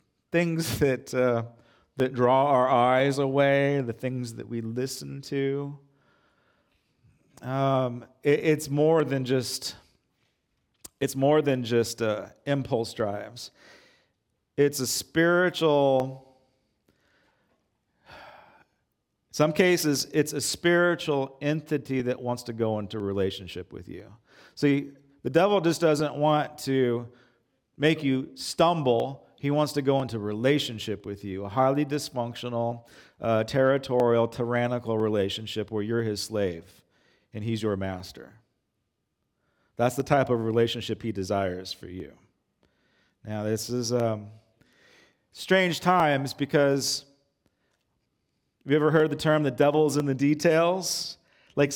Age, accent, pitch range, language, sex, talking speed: 40-59, American, 115-150 Hz, English, male, 125 wpm